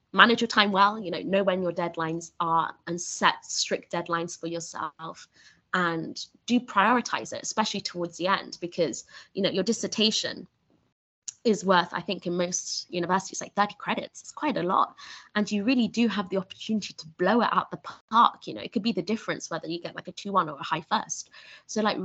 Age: 20-39